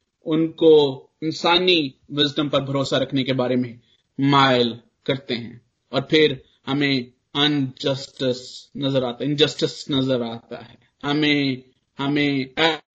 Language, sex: English, male